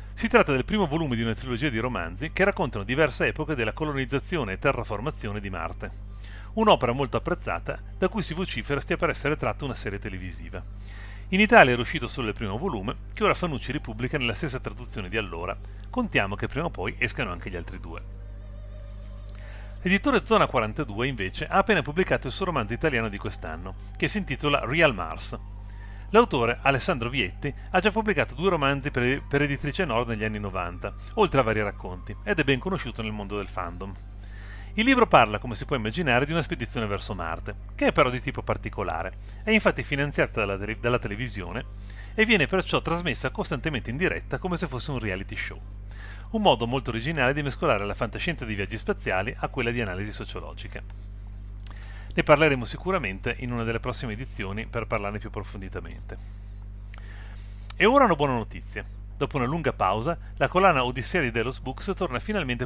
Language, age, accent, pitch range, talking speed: Italian, 40-59, native, 100-145 Hz, 180 wpm